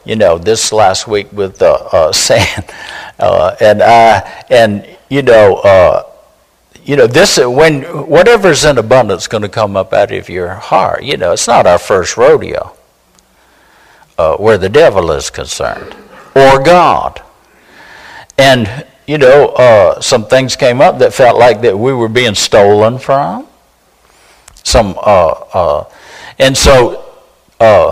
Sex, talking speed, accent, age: male, 150 wpm, American, 60-79